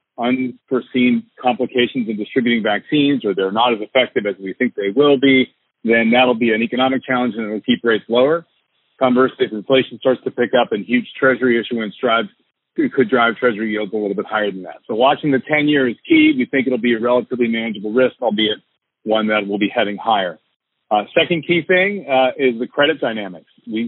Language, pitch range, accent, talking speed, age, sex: English, 115-135 Hz, American, 205 wpm, 40-59, male